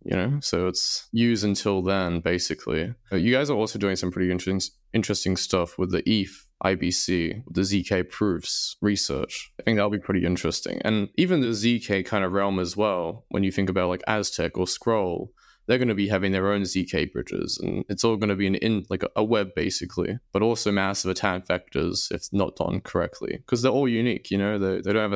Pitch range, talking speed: 95-110 Hz, 210 wpm